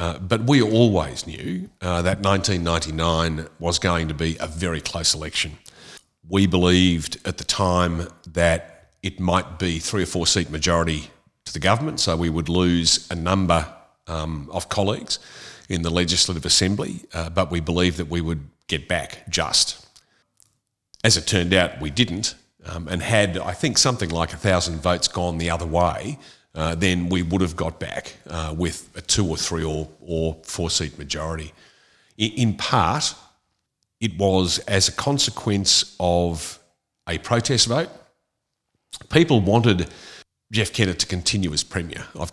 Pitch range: 80-95 Hz